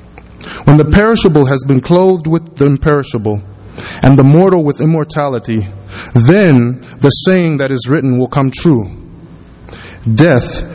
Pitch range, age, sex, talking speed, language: 100-135 Hz, 20-39, male, 135 wpm, English